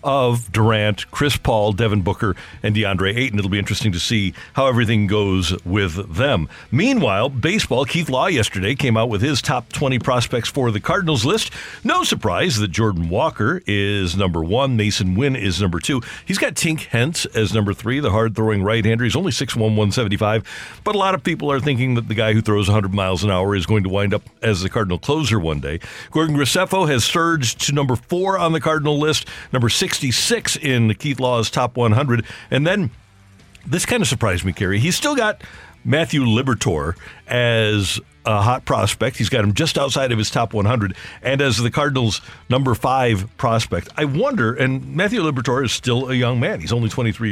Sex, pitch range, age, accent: male, 105-135 Hz, 50-69, American